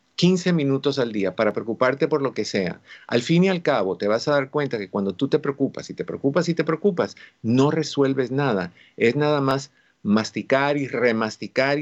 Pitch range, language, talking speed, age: 105-140 Hz, Spanish, 205 wpm, 50-69